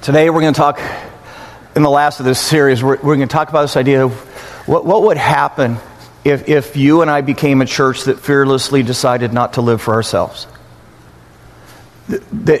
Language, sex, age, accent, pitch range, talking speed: English, male, 40-59, American, 130-165 Hz, 195 wpm